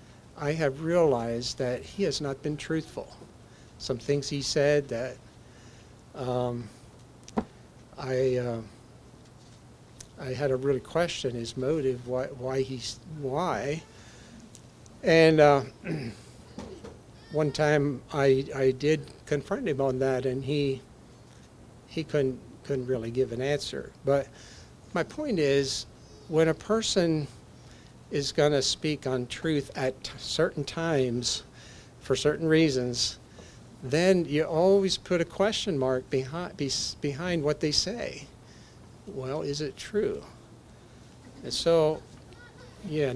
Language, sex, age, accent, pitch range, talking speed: English, male, 60-79, American, 125-150 Hz, 115 wpm